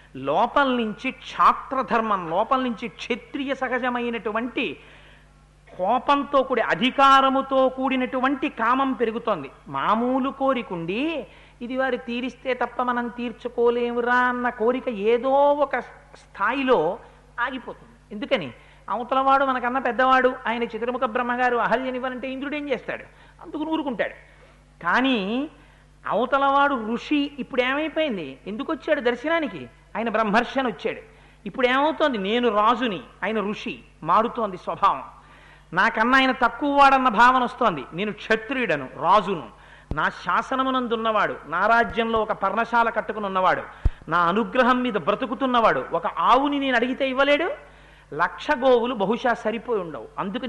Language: Telugu